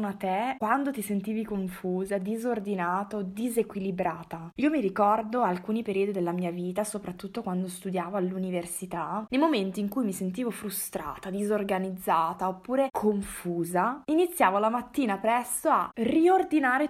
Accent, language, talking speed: native, Italian, 130 wpm